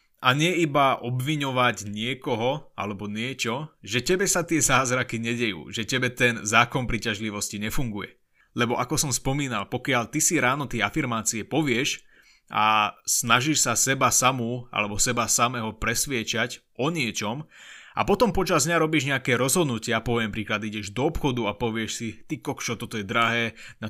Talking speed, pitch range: 155 wpm, 115-145 Hz